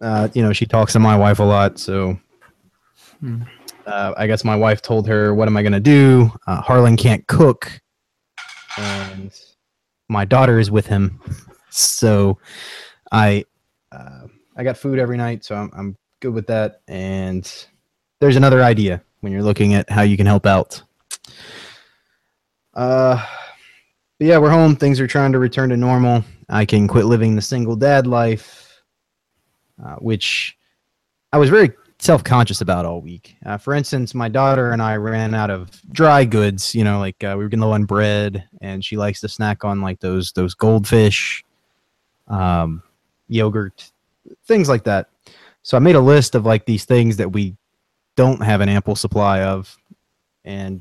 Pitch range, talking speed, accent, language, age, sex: 100-120 Hz, 170 wpm, American, English, 20-39, male